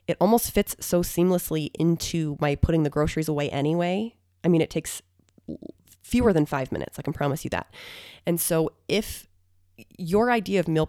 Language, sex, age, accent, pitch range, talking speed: English, female, 20-39, American, 130-175 Hz, 175 wpm